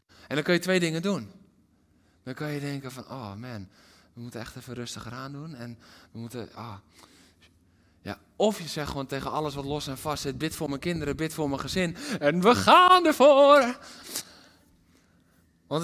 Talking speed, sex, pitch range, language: 190 wpm, male, 130-220 Hz, Dutch